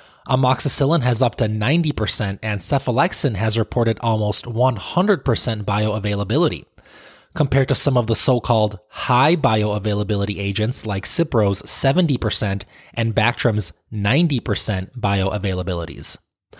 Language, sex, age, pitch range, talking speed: English, male, 20-39, 110-140 Hz, 100 wpm